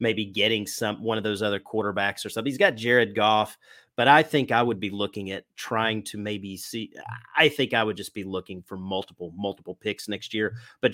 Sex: male